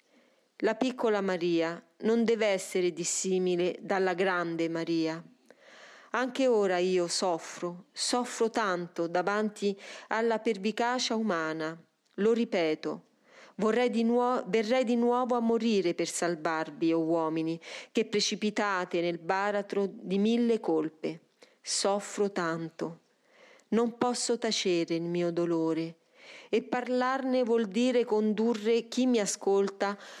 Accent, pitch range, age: native, 180-230 Hz, 40-59